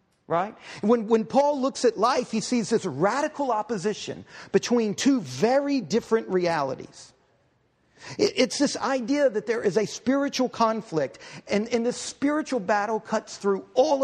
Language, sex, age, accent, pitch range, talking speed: English, male, 50-69, American, 175-240 Hz, 150 wpm